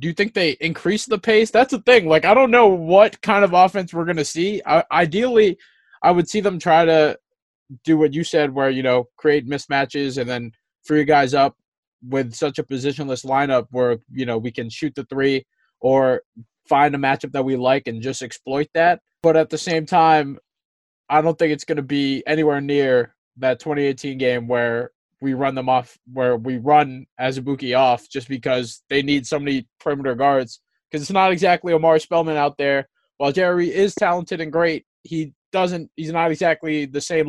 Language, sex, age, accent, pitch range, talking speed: English, male, 20-39, American, 135-170 Hz, 200 wpm